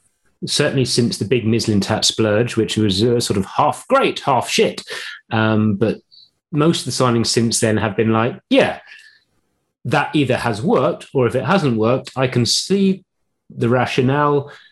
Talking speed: 165 wpm